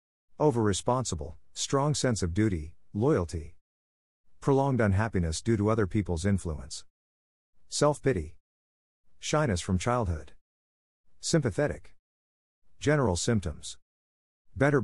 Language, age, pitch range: English, 50-69, 85-115 Hz